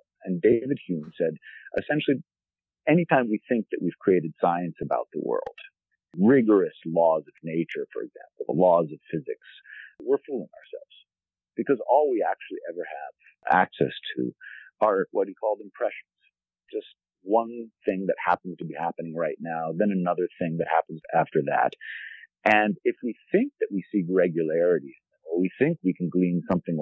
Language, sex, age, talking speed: English, male, 50-69, 160 wpm